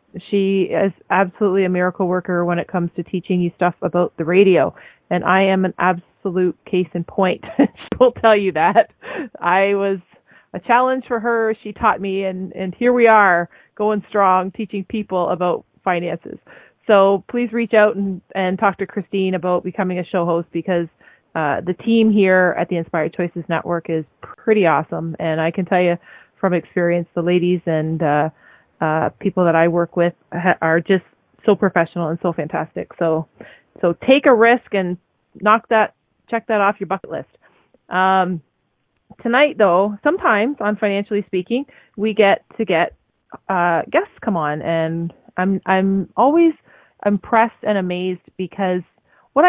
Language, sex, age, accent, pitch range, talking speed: English, female, 30-49, American, 175-205 Hz, 165 wpm